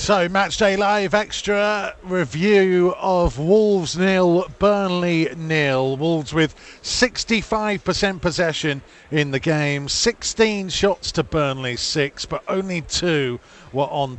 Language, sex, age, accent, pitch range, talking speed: English, male, 40-59, British, 130-175 Hz, 120 wpm